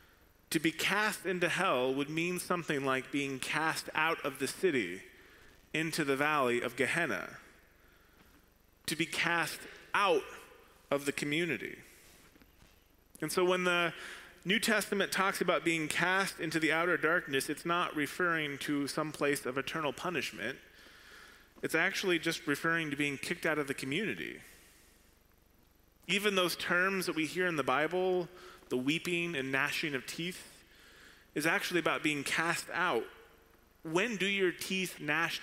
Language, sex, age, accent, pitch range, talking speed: English, male, 30-49, American, 145-180 Hz, 145 wpm